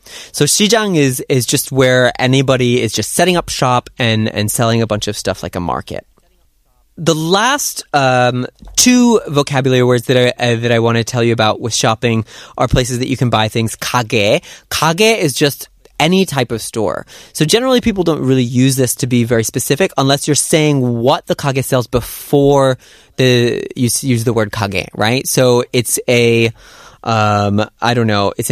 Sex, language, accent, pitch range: male, Korean, American, 115-145 Hz